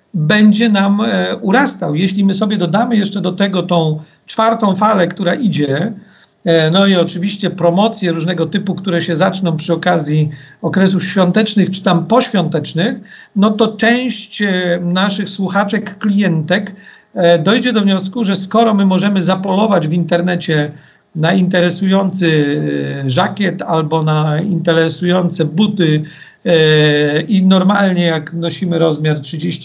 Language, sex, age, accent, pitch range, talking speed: Polish, male, 50-69, native, 170-210 Hz, 120 wpm